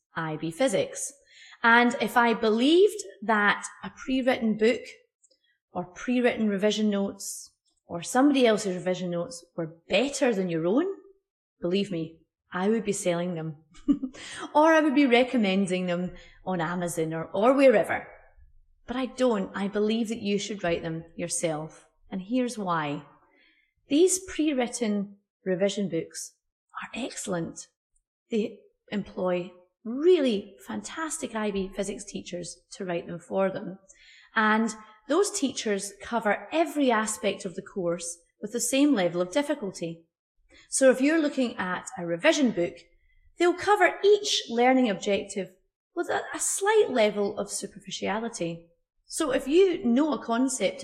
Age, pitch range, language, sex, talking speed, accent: 30-49, 180-265 Hz, English, female, 135 wpm, British